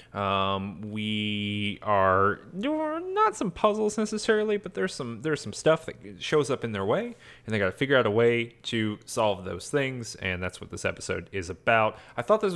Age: 30-49